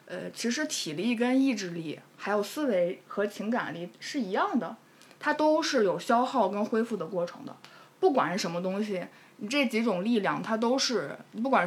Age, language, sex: 20-39, Chinese, female